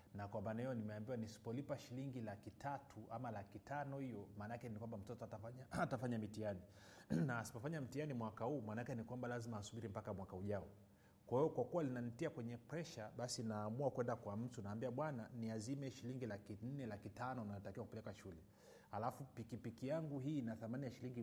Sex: male